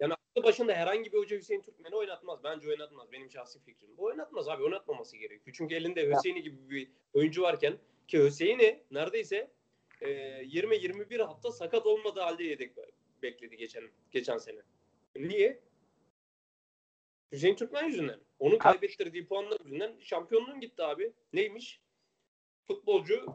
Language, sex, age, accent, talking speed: Turkish, male, 30-49, native, 140 wpm